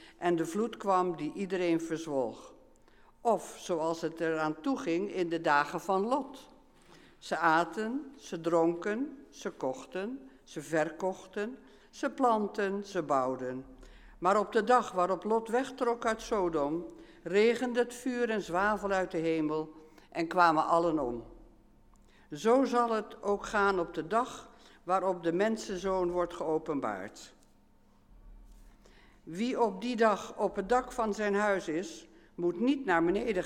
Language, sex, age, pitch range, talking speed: English, female, 60-79, 160-225 Hz, 140 wpm